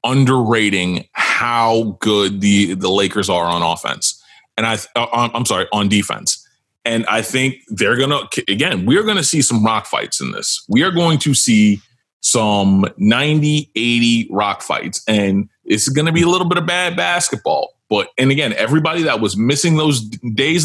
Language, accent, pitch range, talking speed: English, American, 105-150 Hz, 175 wpm